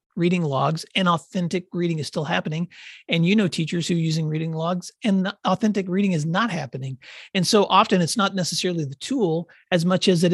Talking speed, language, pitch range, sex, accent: 205 wpm, English, 160-190 Hz, male, American